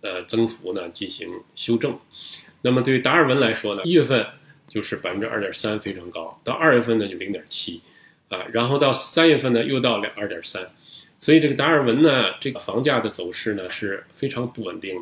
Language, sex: Chinese, male